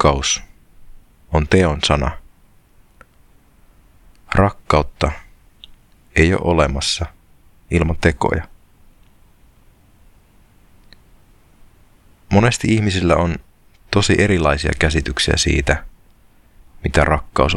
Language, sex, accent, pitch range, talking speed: Finnish, male, native, 75-95 Hz, 65 wpm